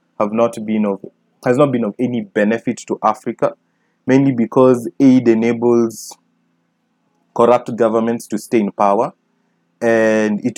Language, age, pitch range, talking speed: English, 20-39, 105-125 Hz, 135 wpm